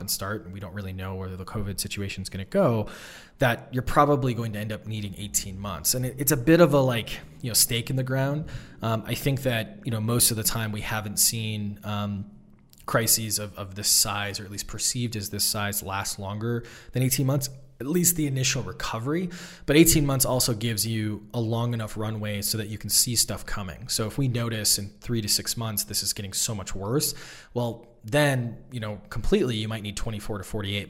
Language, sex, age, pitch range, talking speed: English, male, 20-39, 105-125 Hz, 225 wpm